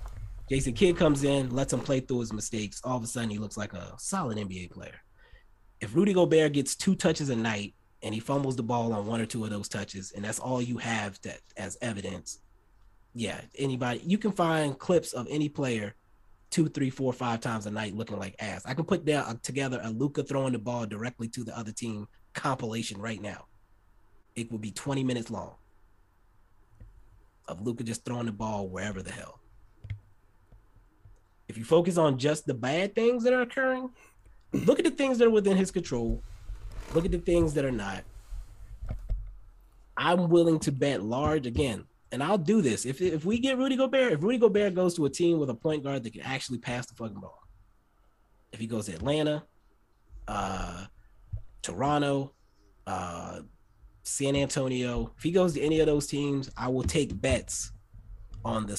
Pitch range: 100-140 Hz